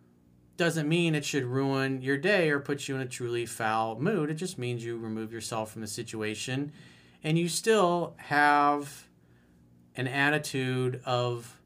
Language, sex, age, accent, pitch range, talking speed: English, male, 40-59, American, 110-145 Hz, 160 wpm